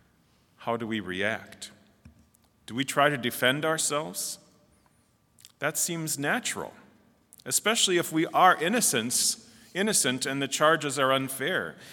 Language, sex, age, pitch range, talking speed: English, male, 40-59, 115-150 Hz, 115 wpm